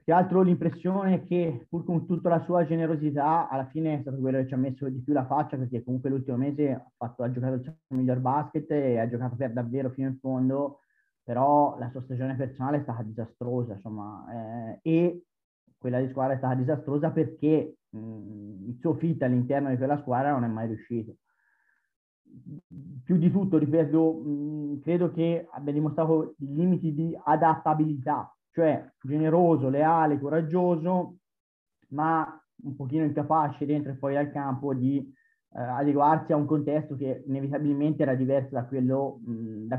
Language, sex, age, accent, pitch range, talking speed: Italian, male, 30-49, native, 130-160 Hz, 170 wpm